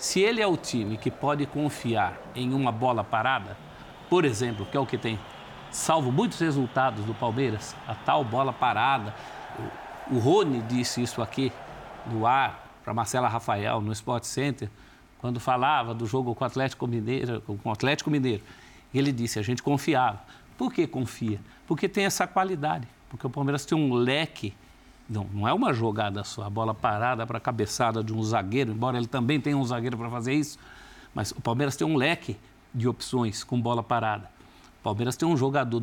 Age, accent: 50-69, Brazilian